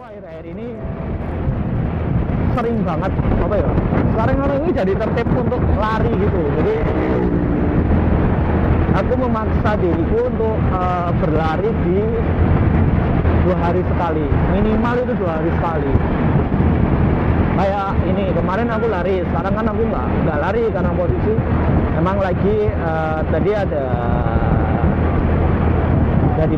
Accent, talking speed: native, 110 wpm